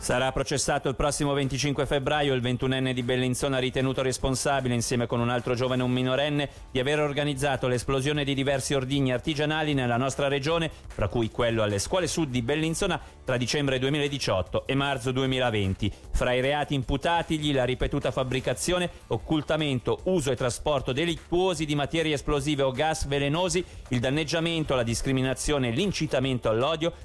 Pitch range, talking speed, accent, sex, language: 125-155 Hz, 150 wpm, native, male, Italian